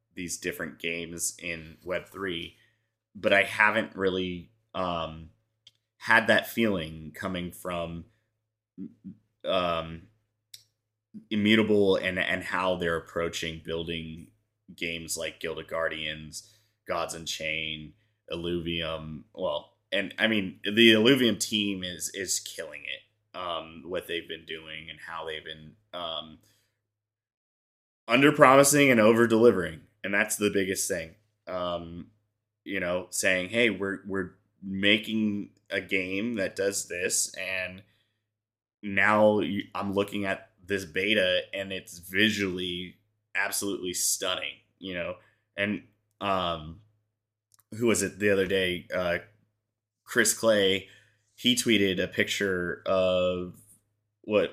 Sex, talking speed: male, 120 wpm